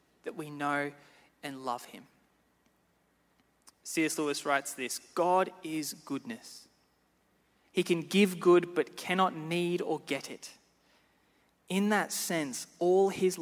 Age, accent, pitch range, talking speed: 20-39, Australian, 145-190 Hz, 125 wpm